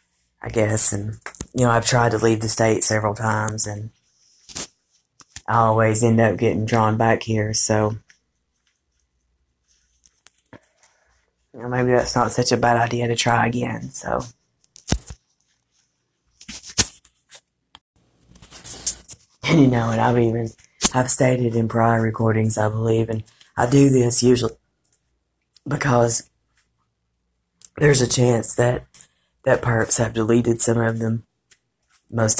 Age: 30-49